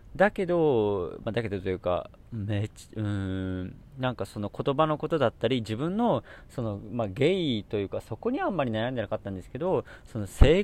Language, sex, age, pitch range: Japanese, male, 40-59, 95-155 Hz